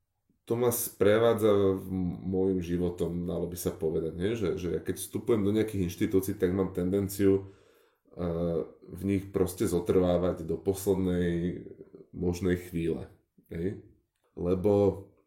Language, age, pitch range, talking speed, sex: Slovak, 20-39, 90-100 Hz, 120 wpm, male